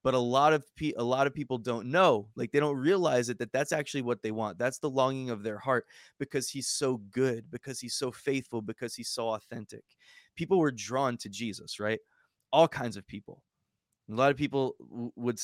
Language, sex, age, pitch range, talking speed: English, male, 20-39, 115-140 Hz, 210 wpm